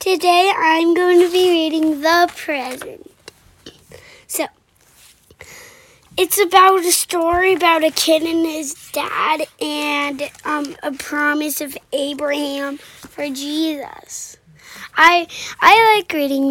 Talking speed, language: 115 wpm, English